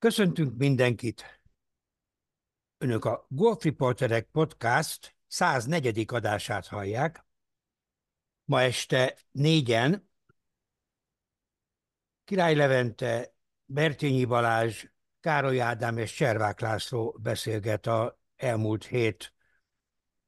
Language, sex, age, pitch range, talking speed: Hungarian, male, 60-79, 115-145 Hz, 75 wpm